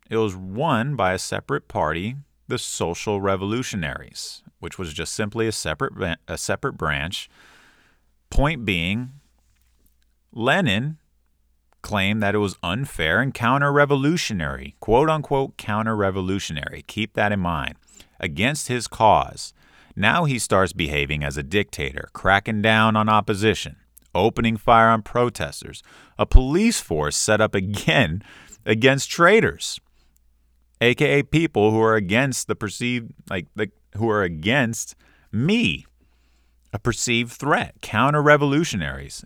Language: English